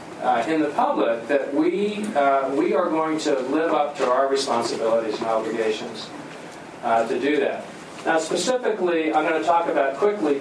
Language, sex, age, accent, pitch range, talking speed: English, male, 40-59, American, 135-185 Hz, 165 wpm